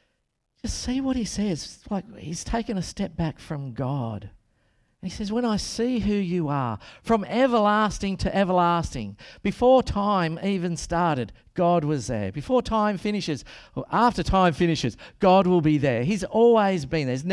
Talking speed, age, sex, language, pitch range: 165 wpm, 50-69, male, English, 145-205 Hz